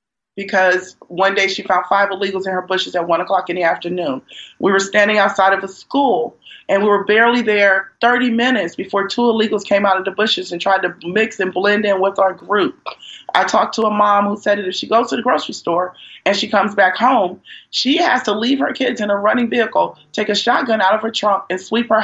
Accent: American